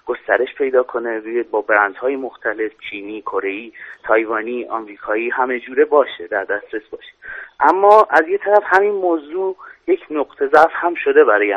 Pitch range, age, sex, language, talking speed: 120-185 Hz, 30-49, male, Persian, 145 wpm